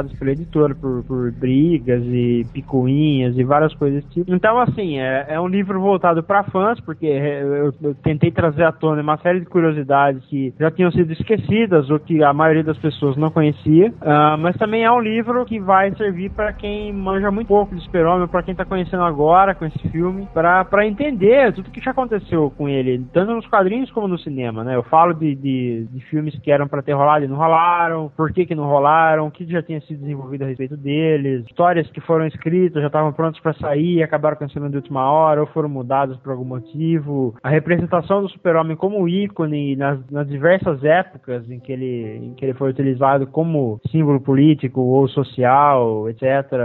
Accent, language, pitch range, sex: Brazilian, Portuguese, 140-180 Hz, male